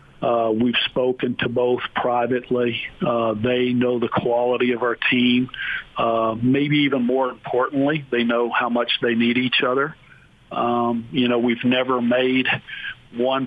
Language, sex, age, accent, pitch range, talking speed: English, male, 50-69, American, 120-130 Hz, 150 wpm